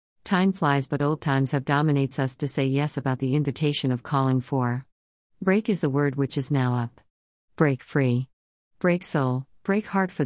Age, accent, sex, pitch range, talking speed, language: 50-69, American, female, 130-150 Hz, 185 wpm, English